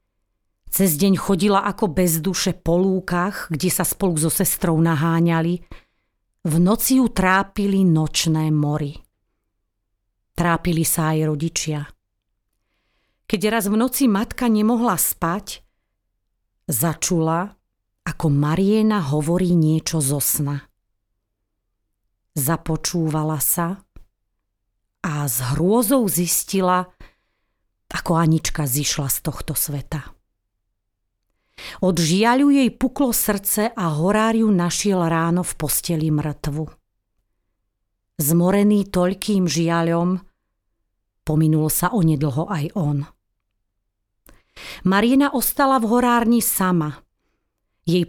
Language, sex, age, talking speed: Slovak, female, 30-49, 95 wpm